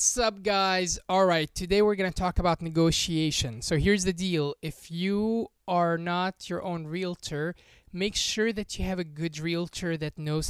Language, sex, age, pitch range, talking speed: English, male, 20-39, 160-195 Hz, 185 wpm